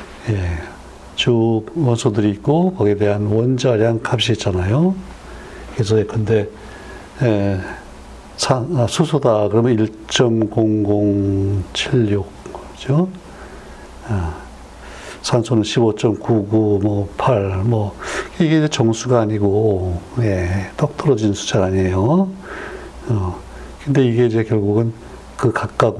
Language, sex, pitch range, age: Korean, male, 100-130 Hz, 60-79